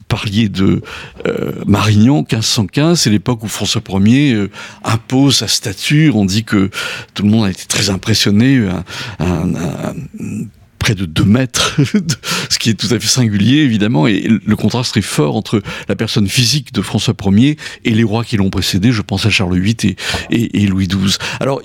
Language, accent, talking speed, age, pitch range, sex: French, French, 190 wpm, 60-79, 110-140 Hz, male